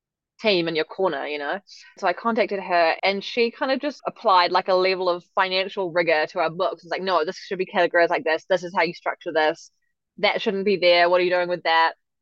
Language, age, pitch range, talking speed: English, 10-29, 170-215 Hz, 245 wpm